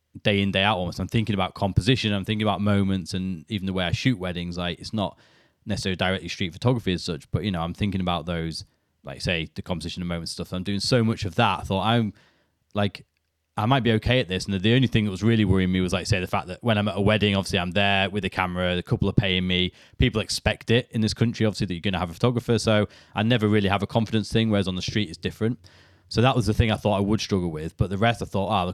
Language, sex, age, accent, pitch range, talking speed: English, male, 20-39, British, 90-110 Hz, 285 wpm